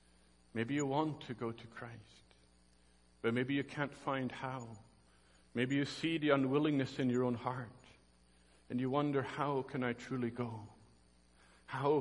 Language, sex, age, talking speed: English, male, 50-69, 155 wpm